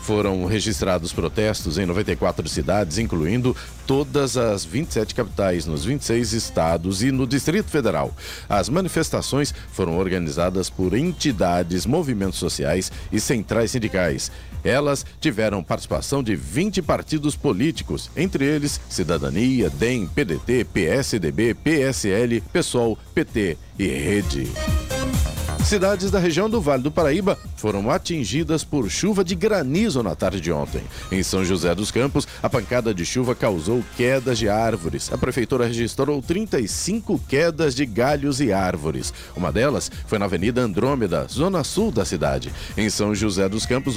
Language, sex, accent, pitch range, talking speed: Portuguese, male, Brazilian, 95-140 Hz, 140 wpm